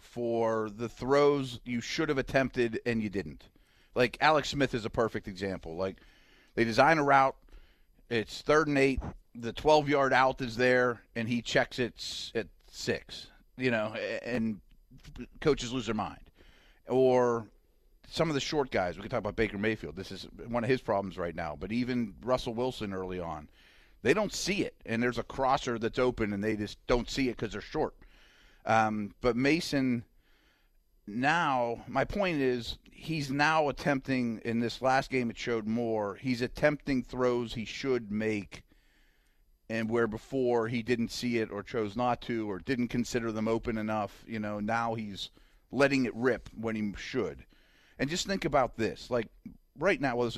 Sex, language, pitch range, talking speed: male, English, 110-130 Hz, 175 wpm